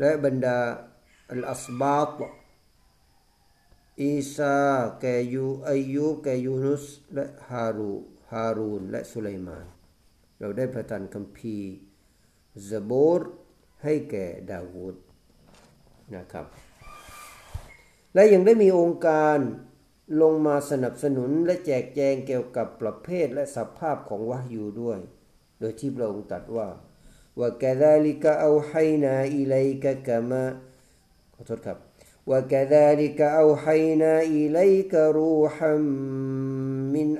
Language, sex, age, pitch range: Thai, male, 50-69, 120-150 Hz